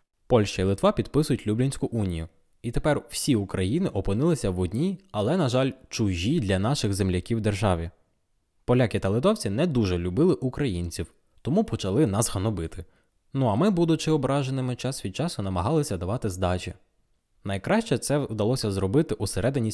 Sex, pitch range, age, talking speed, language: male, 95-130 Hz, 20-39, 150 wpm, Ukrainian